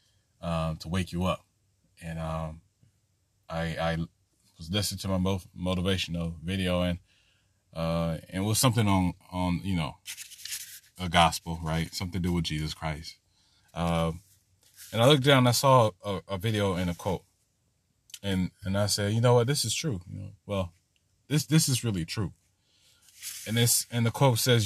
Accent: American